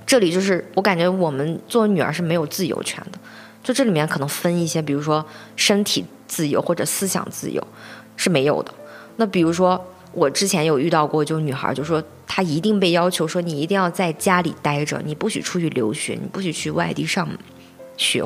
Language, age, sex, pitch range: Chinese, 20-39, female, 155-195 Hz